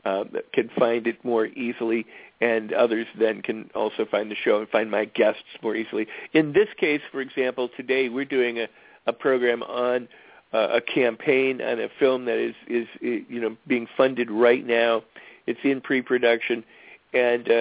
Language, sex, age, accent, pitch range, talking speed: English, male, 50-69, American, 115-135 Hz, 180 wpm